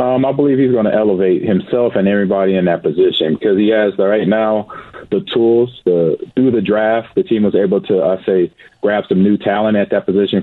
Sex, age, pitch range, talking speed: male, 40-59, 95-110 Hz, 230 wpm